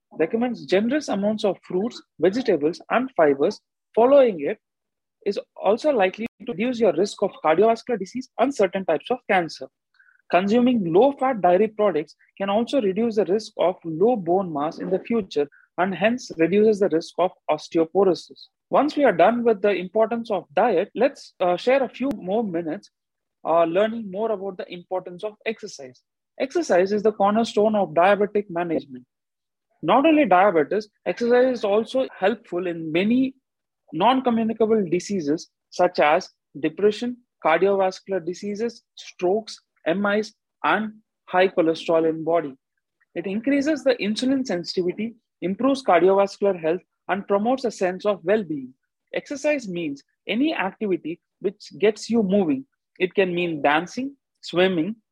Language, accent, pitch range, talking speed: English, Indian, 180-240 Hz, 140 wpm